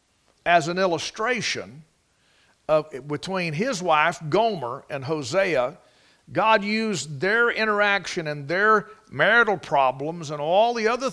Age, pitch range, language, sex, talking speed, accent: 50-69, 160-225 Hz, English, male, 120 wpm, American